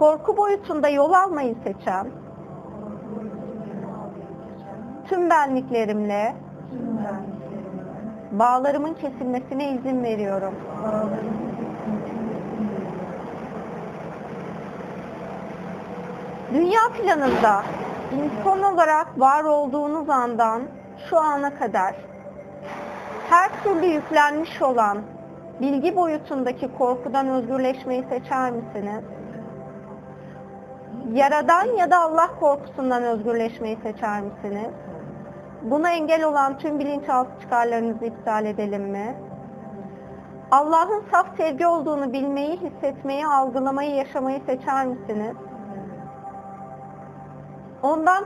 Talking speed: 75 wpm